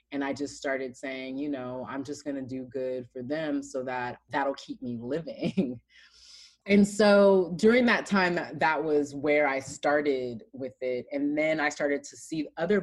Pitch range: 135-165 Hz